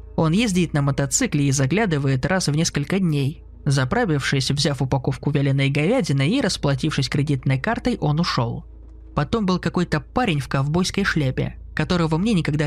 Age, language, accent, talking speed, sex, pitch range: 20-39, Russian, native, 145 wpm, male, 135-180 Hz